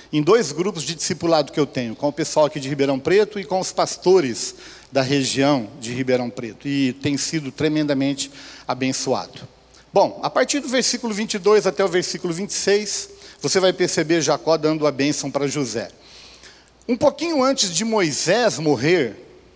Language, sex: Portuguese, male